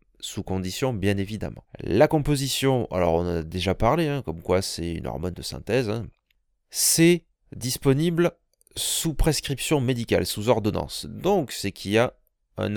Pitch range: 95-130 Hz